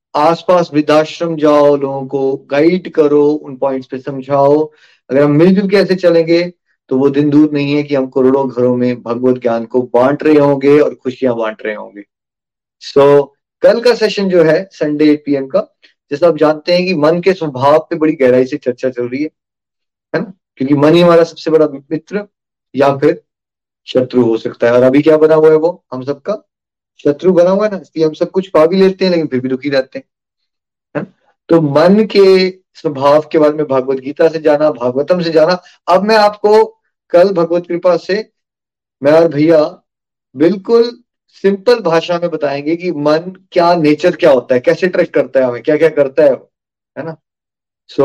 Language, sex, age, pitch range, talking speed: Hindi, male, 20-39, 140-175 Hz, 190 wpm